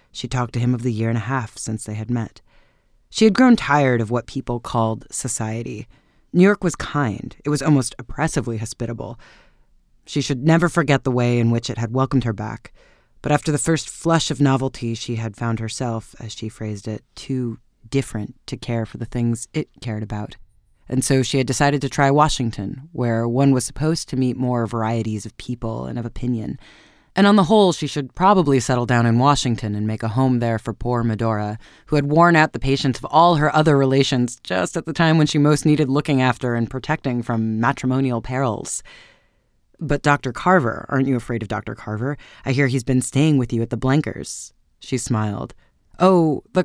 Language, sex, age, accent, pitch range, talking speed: English, female, 30-49, American, 115-145 Hz, 205 wpm